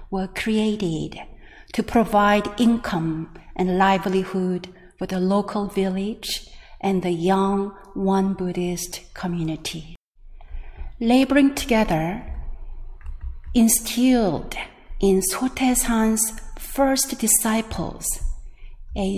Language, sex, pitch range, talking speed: English, female, 175-225 Hz, 80 wpm